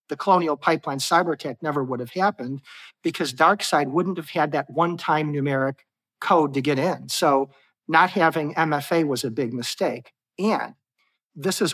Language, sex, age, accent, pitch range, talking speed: English, male, 50-69, American, 140-170 Hz, 165 wpm